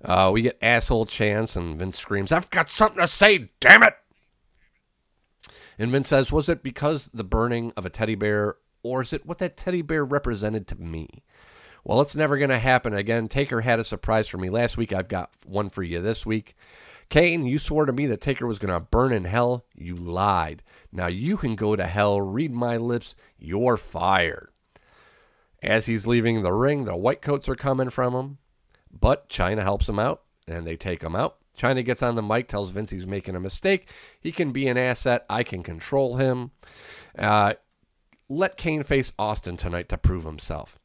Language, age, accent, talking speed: English, 40-59, American, 200 wpm